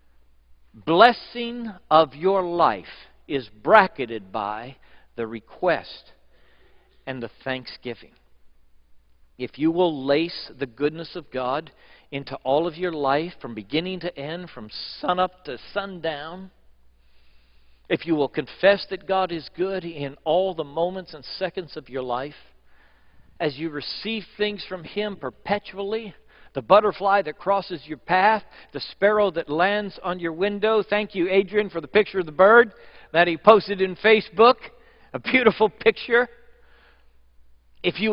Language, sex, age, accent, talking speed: English, male, 60-79, American, 140 wpm